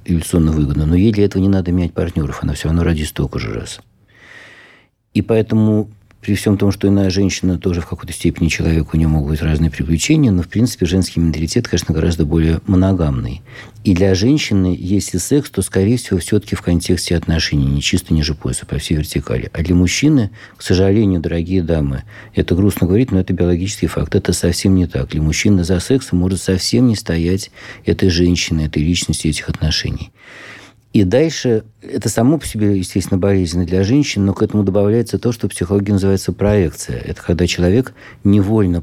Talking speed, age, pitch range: 185 wpm, 50-69, 85-105 Hz